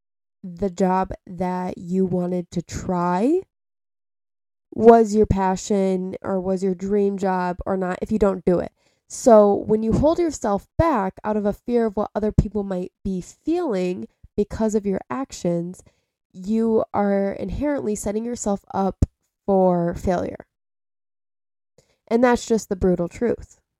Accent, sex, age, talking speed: American, female, 20-39, 145 wpm